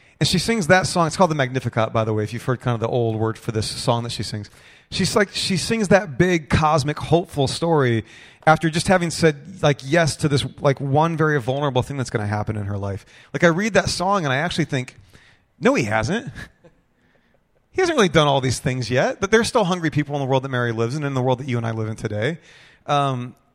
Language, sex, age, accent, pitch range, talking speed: English, male, 30-49, American, 120-160 Hz, 250 wpm